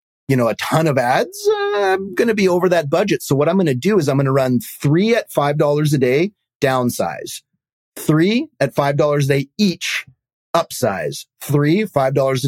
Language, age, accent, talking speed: English, 30-49, American, 190 wpm